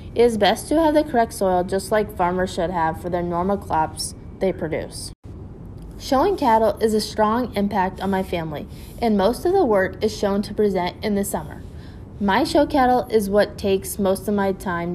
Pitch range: 175-215 Hz